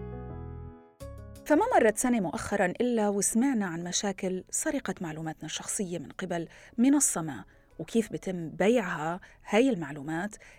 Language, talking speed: Arabic, 115 wpm